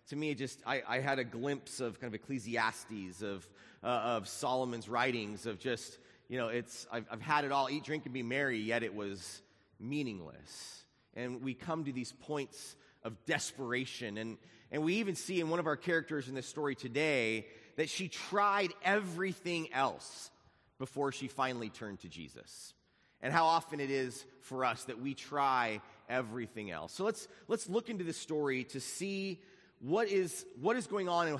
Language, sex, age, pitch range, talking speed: English, male, 30-49, 125-160 Hz, 185 wpm